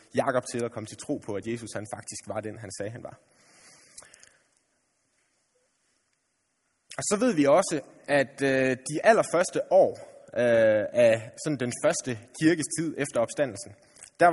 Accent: native